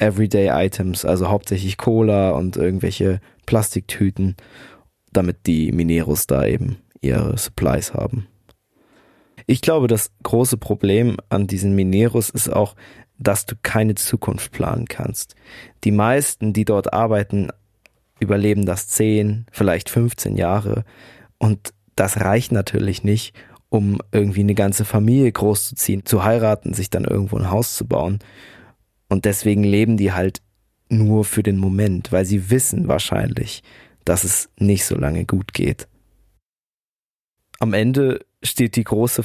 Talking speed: 135 wpm